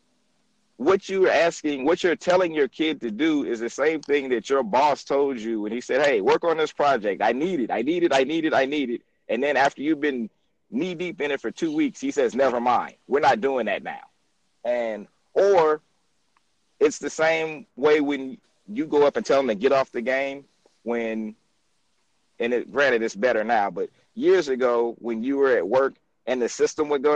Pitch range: 135-215 Hz